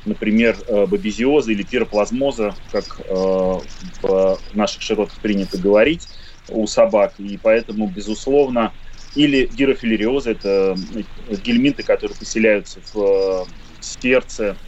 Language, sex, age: Russian, male, 30-49